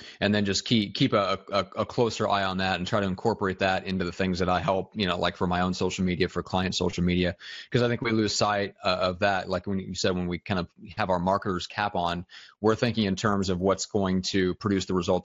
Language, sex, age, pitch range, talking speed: English, male, 30-49, 95-105 Hz, 265 wpm